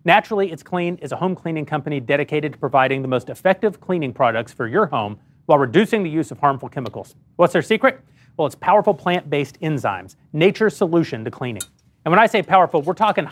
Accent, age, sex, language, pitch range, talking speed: American, 30-49, male, English, 145-195 Hz, 205 wpm